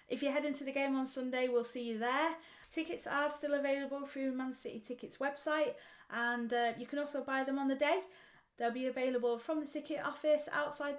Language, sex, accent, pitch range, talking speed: English, female, British, 230-270 Hz, 215 wpm